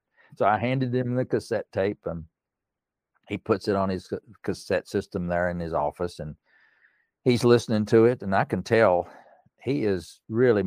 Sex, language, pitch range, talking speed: male, English, 90-110 Hz, 175 wpm